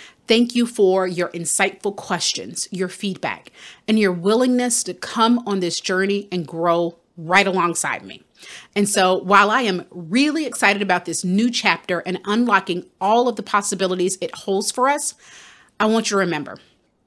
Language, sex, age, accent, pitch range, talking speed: English, female, 30-49, American, 185-235 Hz, 165 wpm